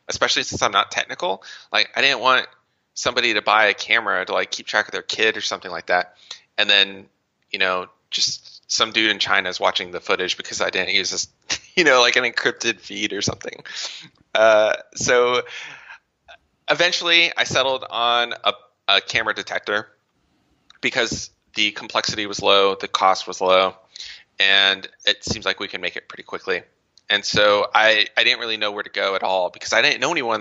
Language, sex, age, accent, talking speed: English, male, 20-39, American, 190 wpm